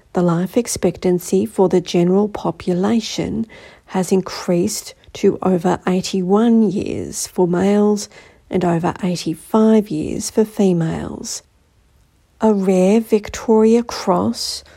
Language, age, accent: English, 50-69, Australian